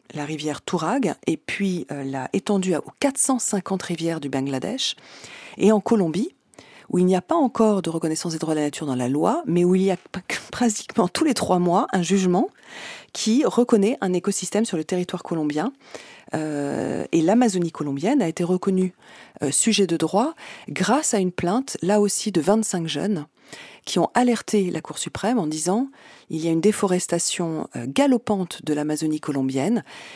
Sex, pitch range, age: female, 155-220 Hz, 40-59